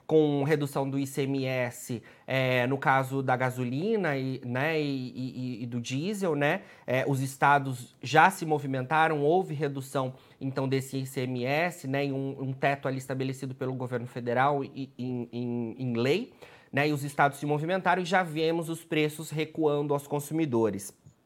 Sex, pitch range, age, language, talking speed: male, 135-160 Hz, 20-39, Portuguese, 145 wpm